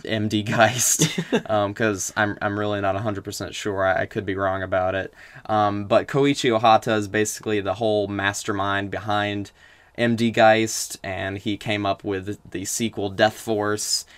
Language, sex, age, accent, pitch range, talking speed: English, male, 20-39, American, 100-115 Hz, 160 wpm